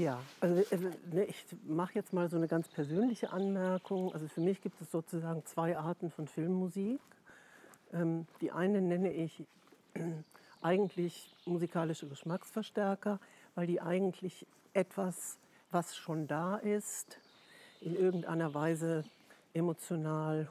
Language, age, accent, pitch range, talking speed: German, 60-79, German, 160-190 Hz, 115 wpm